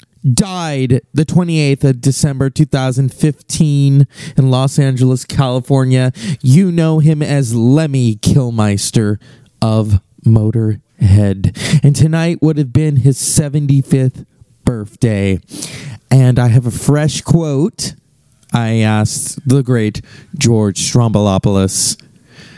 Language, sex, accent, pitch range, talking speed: English, male, American, 115-145 Hz, 100 wpm